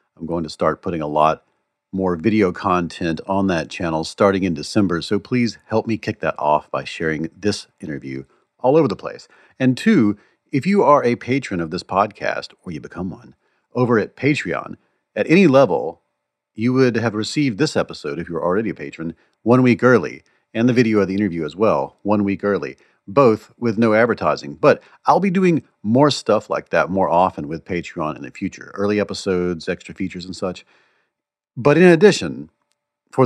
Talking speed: 190 wpm